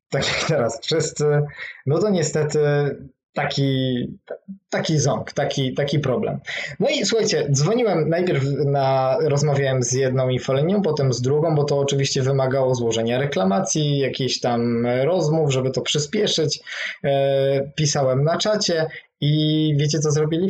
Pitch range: 135-160 Hz